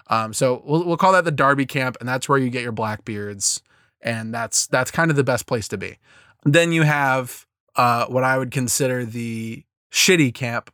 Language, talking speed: English, 205 wpm